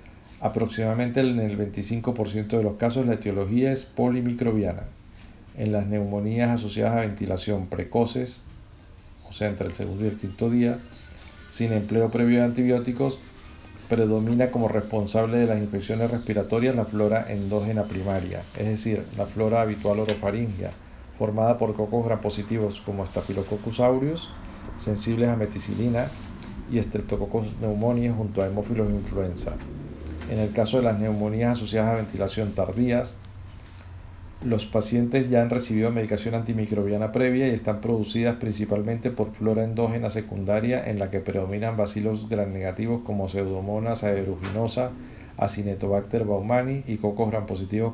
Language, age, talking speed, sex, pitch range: English, 50-69, 135 wpm, male, 100-115 Hz